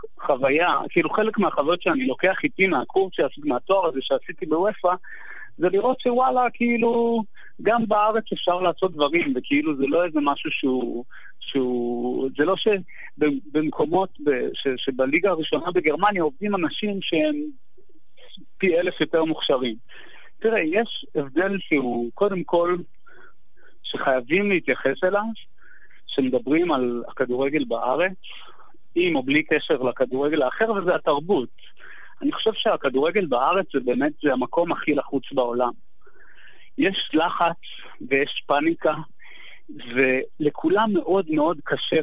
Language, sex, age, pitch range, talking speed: Hebrew, male, 50-69, 145-235 Hz, 115 wpm